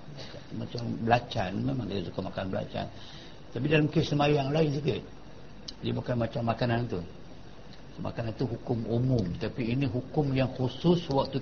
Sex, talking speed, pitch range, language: male, 145 wpm, 110-135 Hz, Malay